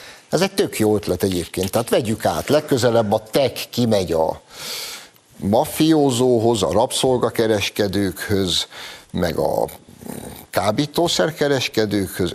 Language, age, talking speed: Hungarian, 60-79, 95 wpm